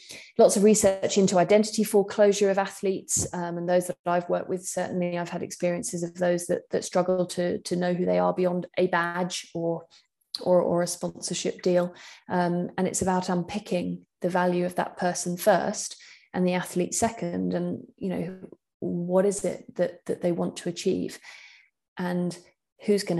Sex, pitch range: female, 175-195 Hz